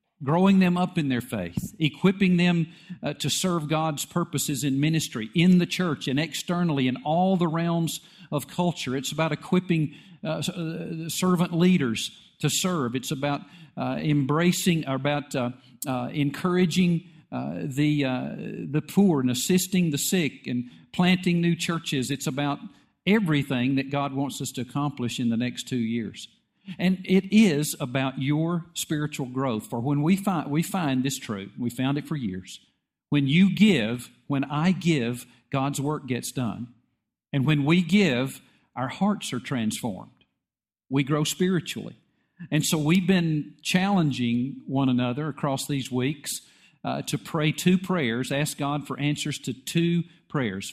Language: English